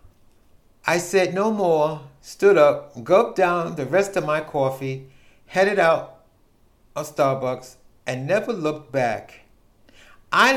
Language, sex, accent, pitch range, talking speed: English, male, American, 125-180 Hz, 125 wpm